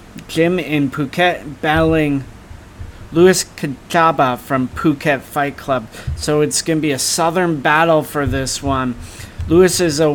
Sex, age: male, 30-49